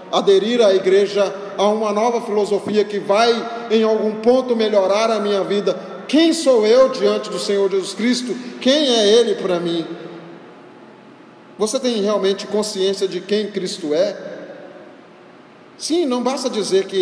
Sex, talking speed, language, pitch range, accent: male, 150 wpm, Portuguese, 155-220 Hz, Brazilian